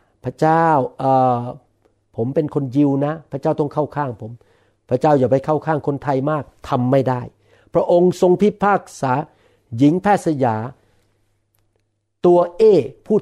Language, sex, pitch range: Thai, male, 120-165 Hz